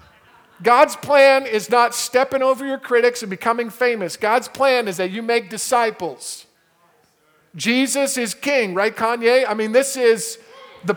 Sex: male